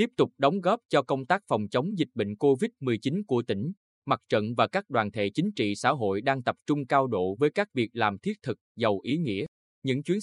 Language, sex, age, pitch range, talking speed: Vietnamese, male, 20-39, 115-155 Hz, 235 wpm